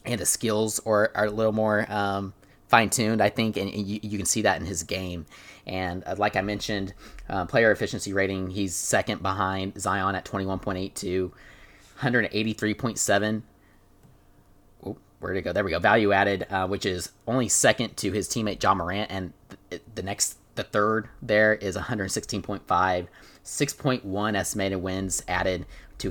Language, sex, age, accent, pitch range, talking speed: English, male, 30-49, American, 95-105 Hz, 155 wpm